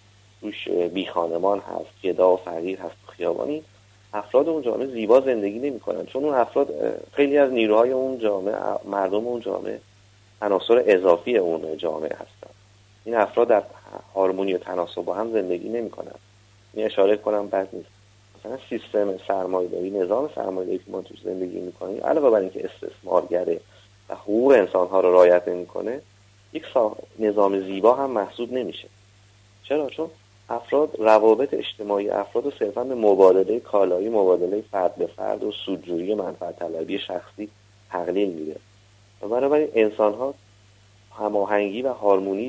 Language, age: Persian, 30-49